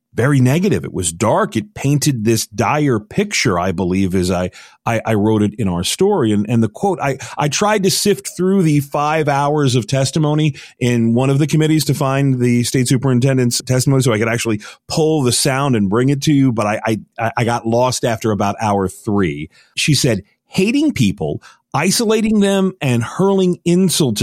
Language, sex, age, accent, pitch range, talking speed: English, male, 40-59, American, 110-160 Hz, 195 wpm